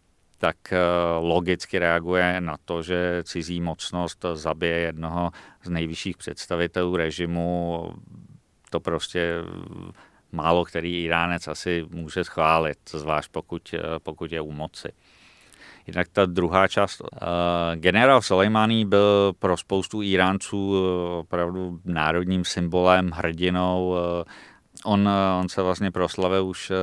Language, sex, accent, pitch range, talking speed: Czech, male, native, 85-95 Hz, 105 wpm